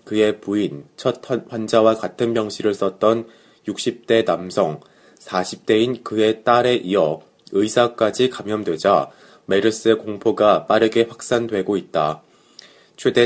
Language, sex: Korean, male